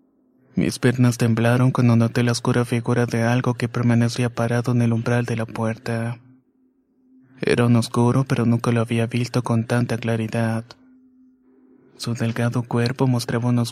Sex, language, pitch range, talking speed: male, Spanish, 120-125 Hz, 155 wpm